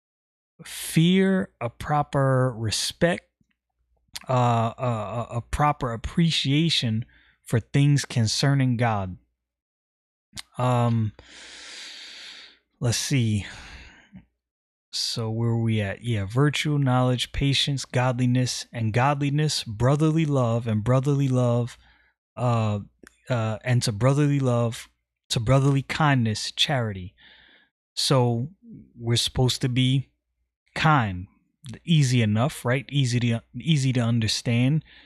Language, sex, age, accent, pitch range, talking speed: English, male, 20-39, American, 115-145 Hz, 100 wpm